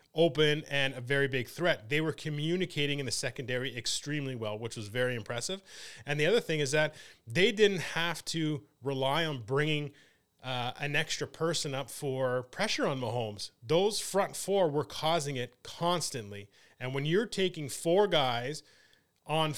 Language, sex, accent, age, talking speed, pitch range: English, male, American, 30-49, 165 wpm, 135-175 Hz